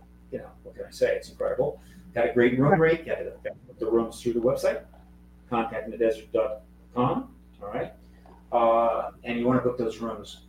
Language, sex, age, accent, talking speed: English, male, 40-59, American, 205 wpm